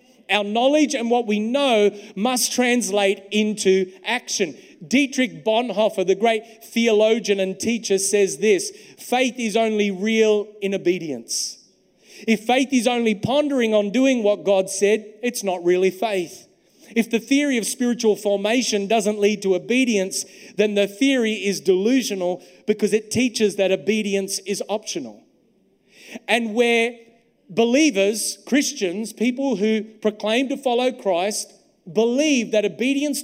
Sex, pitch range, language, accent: male, 195-235 Hz, English, Australian